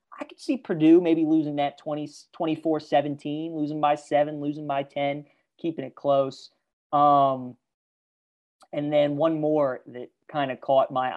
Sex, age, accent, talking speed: male, 30-49, American, 145 wpm